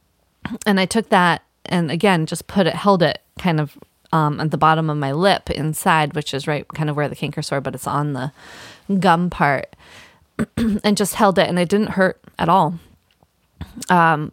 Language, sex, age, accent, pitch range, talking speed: English, female, 20-39, American, 160-195 Hz, 195 wpm